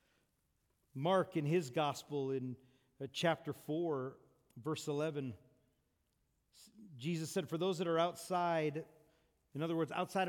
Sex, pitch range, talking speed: male, 150-190 Hz, 115 wpm